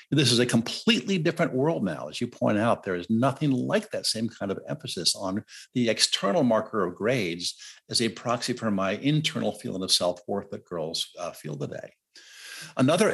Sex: male